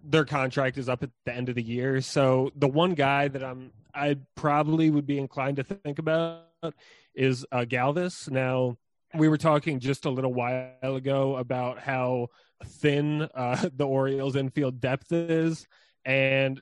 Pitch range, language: 130-150 Hz, English